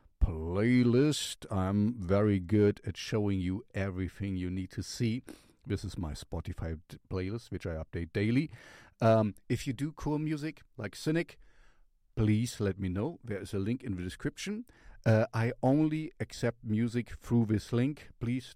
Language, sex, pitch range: English, male, 95-120 Hz